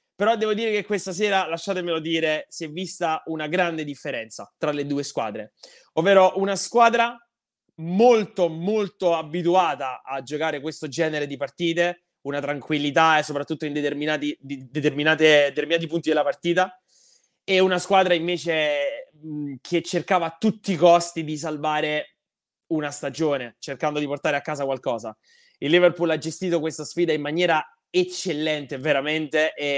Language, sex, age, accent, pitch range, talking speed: Italian, male, 20-39, native, 155-190 Hz, 145 wpm